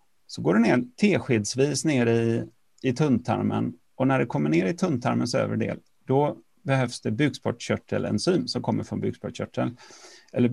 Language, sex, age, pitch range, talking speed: Swedish, male, 30-49, 115-145 Hz, 150 wpm